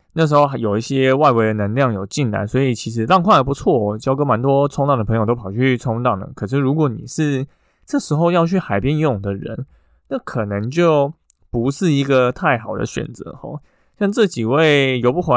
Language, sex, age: Chinese, male, 20-39